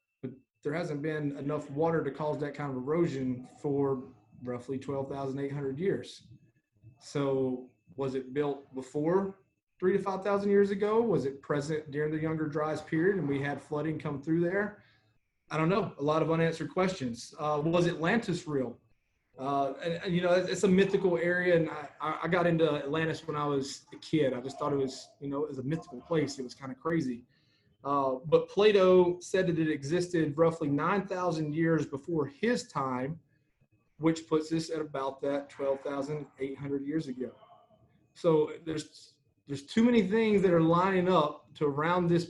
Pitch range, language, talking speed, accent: 140-170 Hz, English, 180 wpm, American